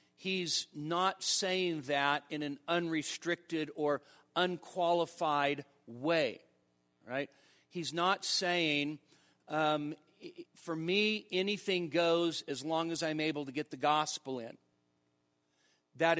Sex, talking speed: male, 110 wpm